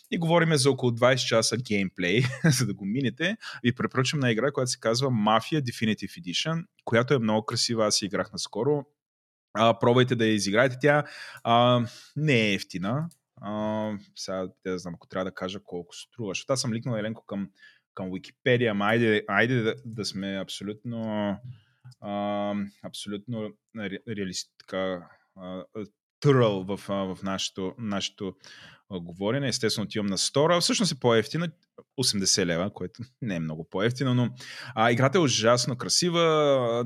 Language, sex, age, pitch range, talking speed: Bulgarian, male, 20-39, 105-135 Hz, 150 wpm